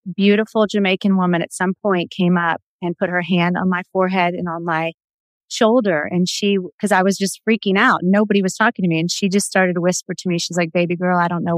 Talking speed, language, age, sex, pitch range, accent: 245 wpm, English, 30-49, female, 170-200 Hz, American